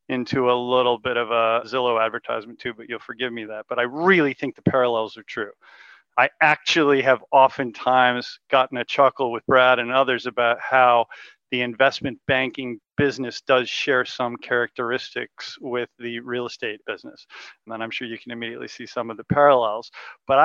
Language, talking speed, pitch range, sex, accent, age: English, 180 wpm, 125-155 Hz, male, American, 40-59